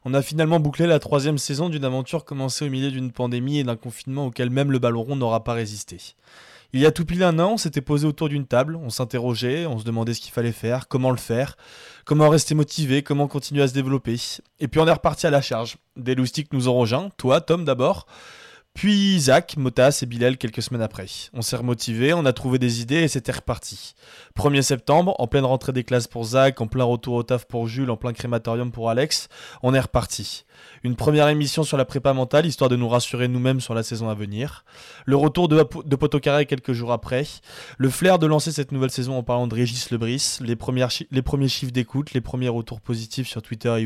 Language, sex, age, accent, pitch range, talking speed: French, male, 20-39, French, 120-145 Hz, 225 wpm